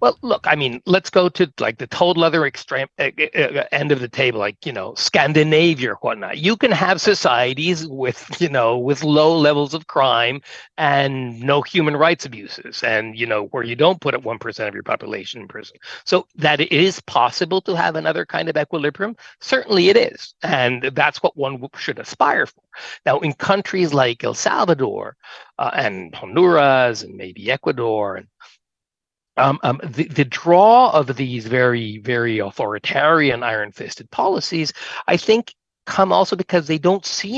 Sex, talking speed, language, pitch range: male, 175 wpm, English, 125-180 Hz